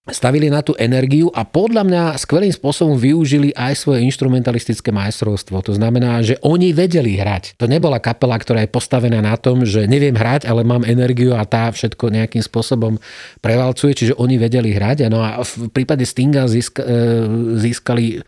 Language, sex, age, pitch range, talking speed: Slovak, male, 40-59, 110-130 Hz, 170 wpm